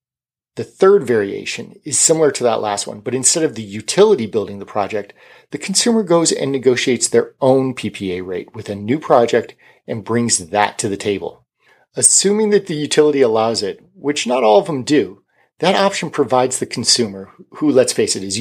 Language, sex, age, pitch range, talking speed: English, male, 40-59, 115-155 Hz, 190 wpm